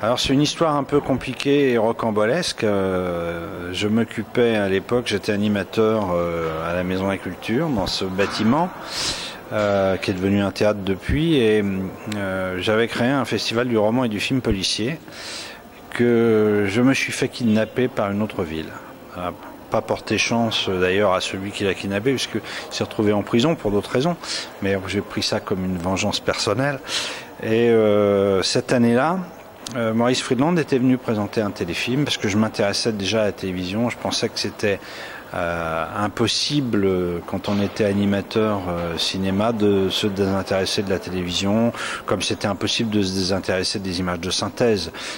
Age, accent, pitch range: 40-59, French, 95-115 Hz